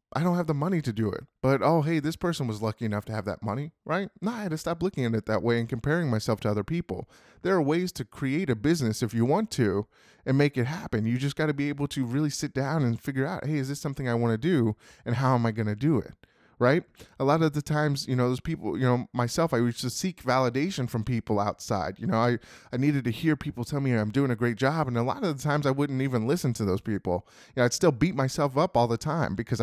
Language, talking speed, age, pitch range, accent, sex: English, 285 wpm, 20-39, 115-155 Hz, American, male